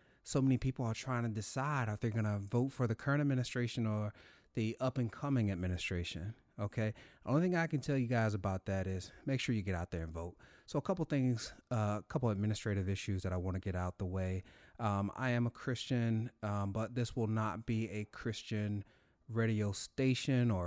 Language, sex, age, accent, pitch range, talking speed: English, male, 30-49, American, 100-120 Hz, 220 wpm